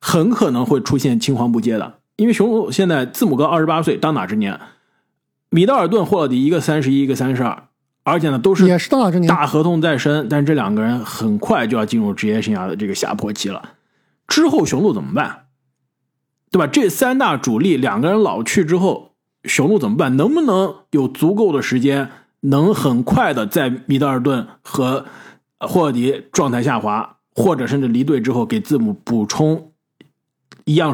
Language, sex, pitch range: Chinese, male, 130-205 Hz